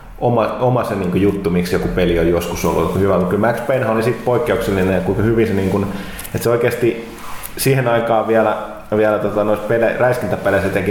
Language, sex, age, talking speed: Finnish, male, 20-39, 205 wpm